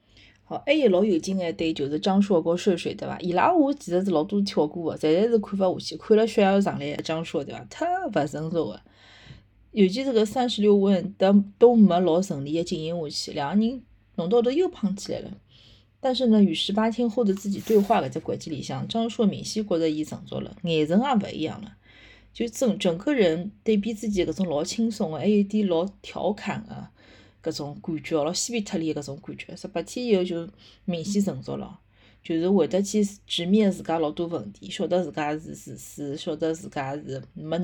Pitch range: 155-210 Hz